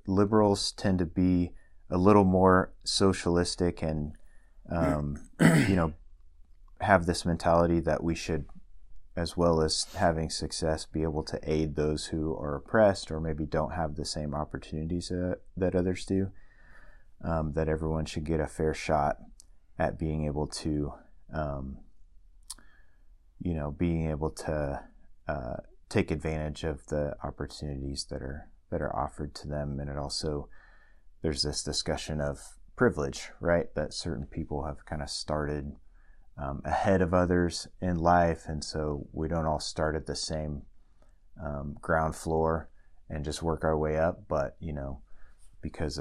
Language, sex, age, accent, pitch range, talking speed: English, male, 30-49, American, 75-85 Hz, 155 wpm